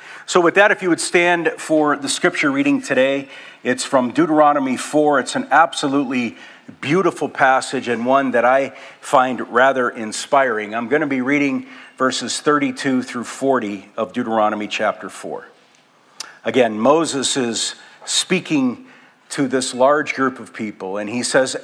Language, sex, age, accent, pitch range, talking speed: English, male, 50-69, American, 125-165 Hz, 150 wpm